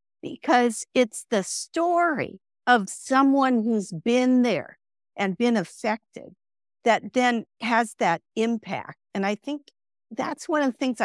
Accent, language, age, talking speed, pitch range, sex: American, English, 50-69, 135 wpm, 190-250 Hz, female